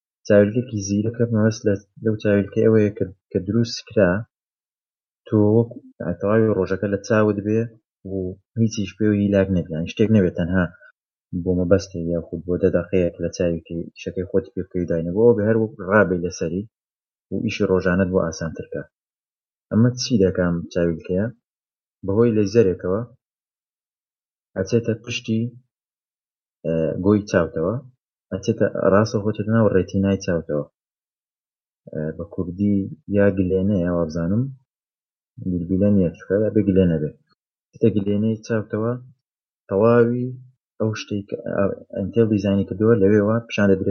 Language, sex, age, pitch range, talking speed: Arabic, male, 30-49, 95-110 Hz, 60 wpm